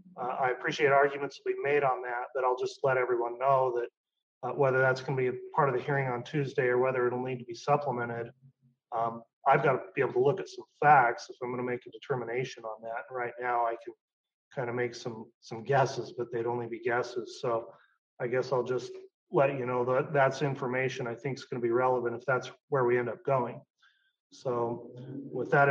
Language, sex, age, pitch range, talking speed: English, male, 30-49, 120-140 Hz, 230 wpm